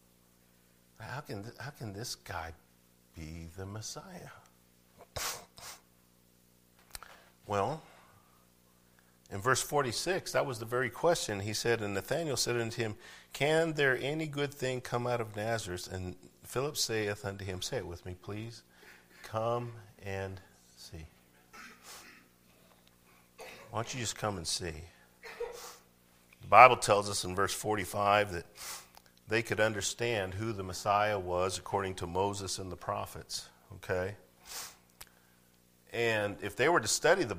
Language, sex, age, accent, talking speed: English, male, 50-69, American, 130 wpm